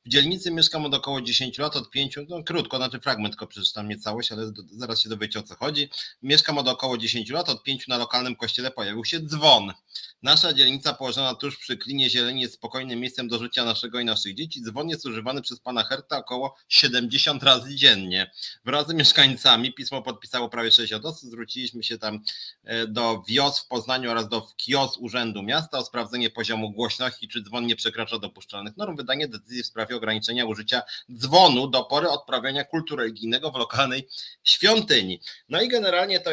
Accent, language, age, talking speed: native, Polish, 30-49, 185 wpm